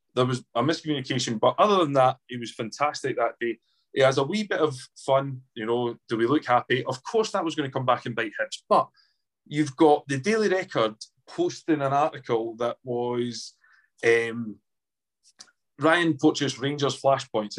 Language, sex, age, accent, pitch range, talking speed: English, male, 30-49, British, 125-170 Hz, 180 wpm